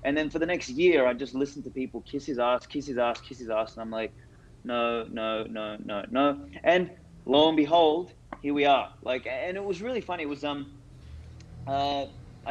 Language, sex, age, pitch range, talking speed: English, male, 20-39, 125-160 Hz, 215 wpm